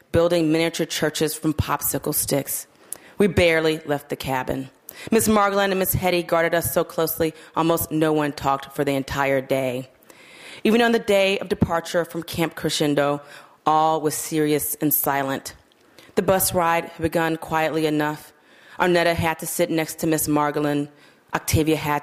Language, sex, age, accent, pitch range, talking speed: English, female, 30-49, American, 145-170 Hz, 160 wpm